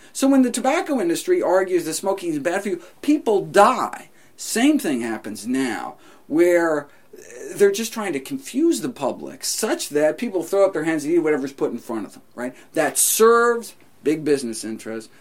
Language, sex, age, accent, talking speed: English, male, 50-69, American, 185 wpm